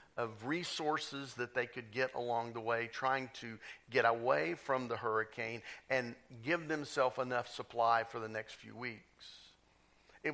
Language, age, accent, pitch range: English, 50-69, American, 120-145 Hz